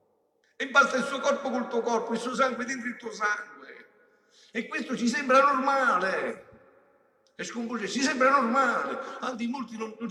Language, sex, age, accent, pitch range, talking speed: Italian, male, 50-69, native, 225-275 Hz, 170 wpm